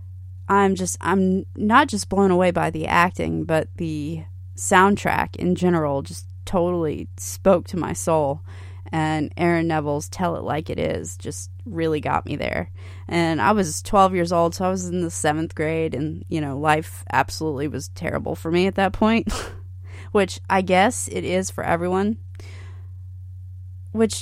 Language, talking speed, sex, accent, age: English, 165 wpm, female, American, 20-39